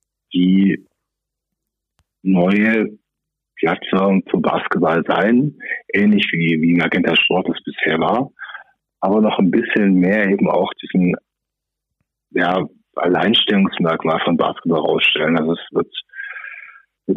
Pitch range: 85-105 Hz